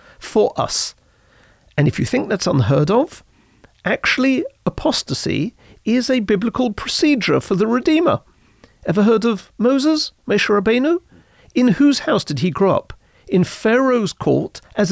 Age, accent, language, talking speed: 50-69, British, English, 135 wpm